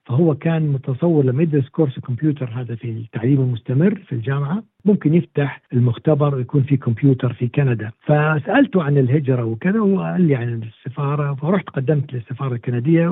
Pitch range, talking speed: 125-160 Hz, 150 wpm